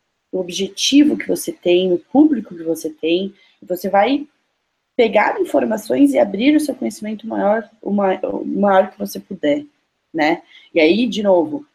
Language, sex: Portuguese, female